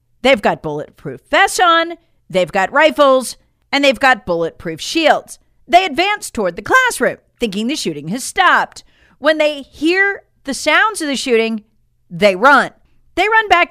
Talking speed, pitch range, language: 160 wpm, 210-345 Hz, English